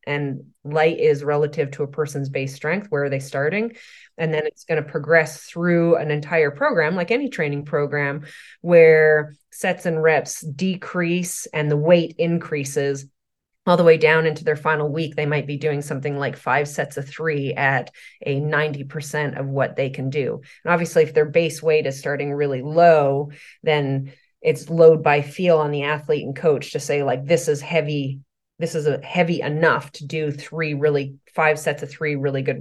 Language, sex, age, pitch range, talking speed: English, female, 30-49, 145-165 Hz, 190 wpm